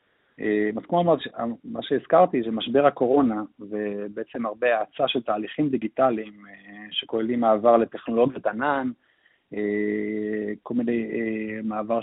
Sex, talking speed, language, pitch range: male, 90 wpm, Hebrew, 110-135 Hz